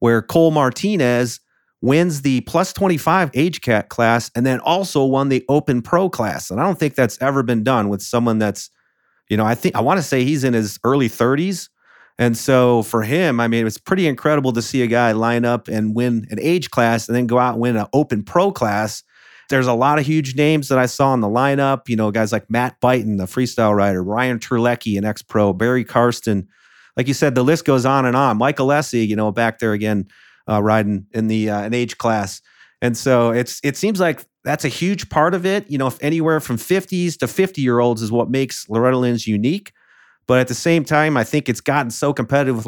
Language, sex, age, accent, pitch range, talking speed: English, male, 40-59, American, 110-140 Hz, 230 wpm